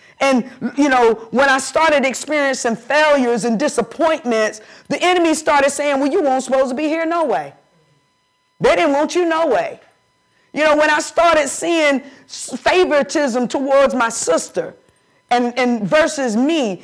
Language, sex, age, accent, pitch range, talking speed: English, female, 40-59, American, 240-305 Hz, 155 wpm